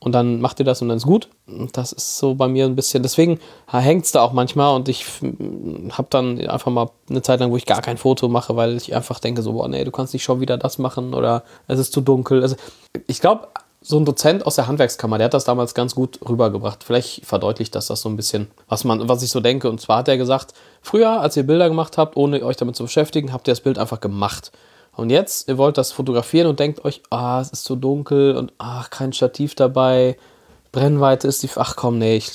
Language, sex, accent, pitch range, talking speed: German, male, German, 120-135 Hz, 250 wpm